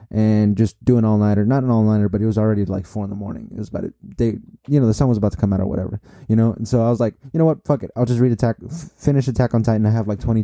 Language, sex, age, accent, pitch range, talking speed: English, male, 20-39, American, 105-125 Hz, 330 wpm